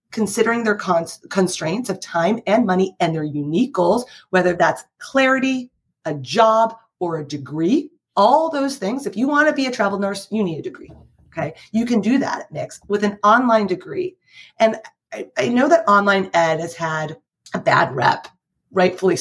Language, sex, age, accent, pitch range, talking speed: English, female, 30-49, American, 180-255 Hz, 180 wpm